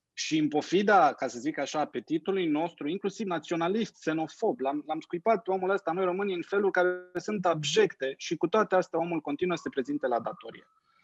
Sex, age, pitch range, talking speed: male, 20-39, 145-210 Hz, 190 wpm